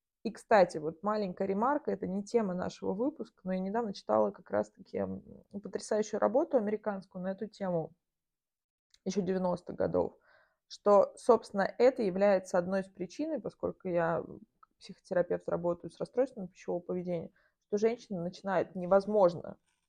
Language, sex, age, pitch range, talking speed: Russian, female, 20-39, 180-215 Hz, 135 wpm